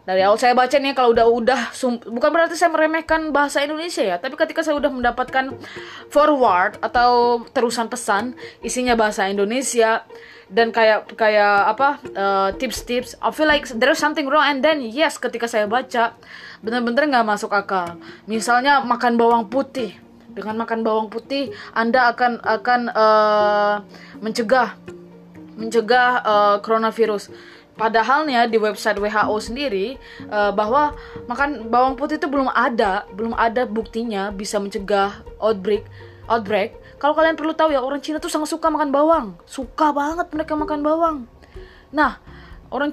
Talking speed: 145 wpm